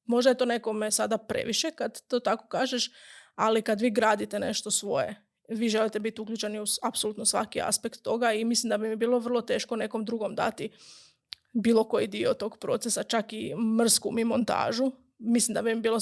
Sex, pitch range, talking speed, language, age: female, 225-245 Hz, 195 wpm, Croatian, 20-39